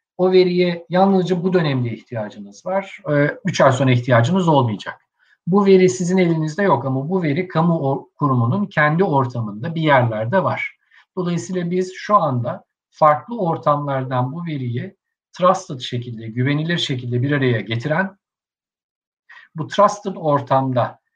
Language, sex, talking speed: Turkish, male, 130 wpm